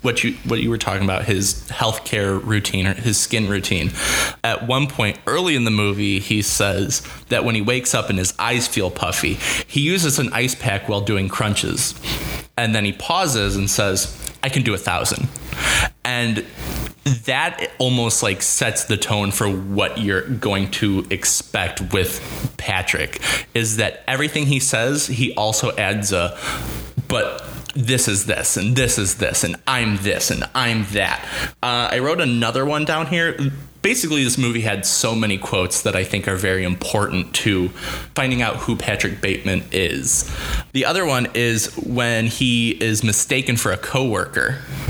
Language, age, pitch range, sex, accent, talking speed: English, 20-39, 100-125 Hz, male, American, 170 wpm